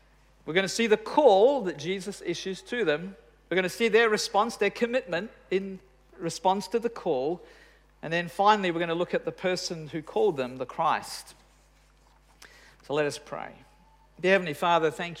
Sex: male